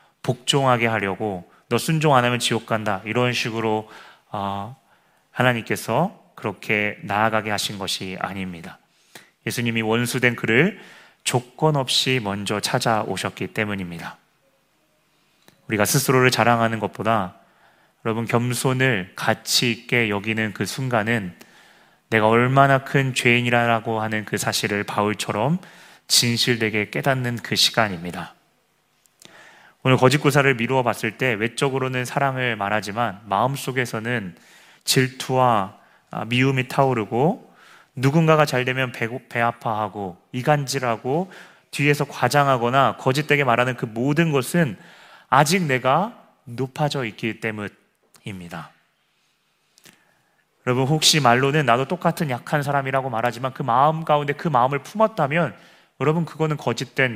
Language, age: Korean, 30-49